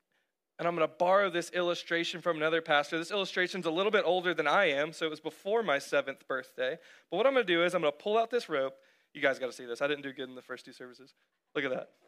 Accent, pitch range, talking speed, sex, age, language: American, 140-205 Hz, 290 wpm, male, 20-39, English